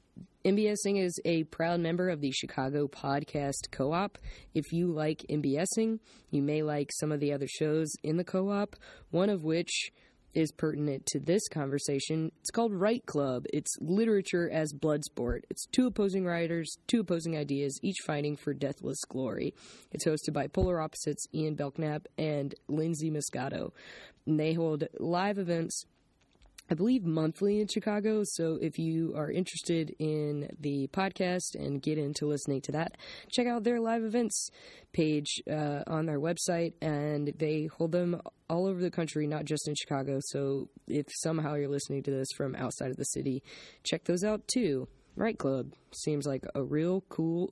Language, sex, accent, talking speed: English, female, American, 170 wpm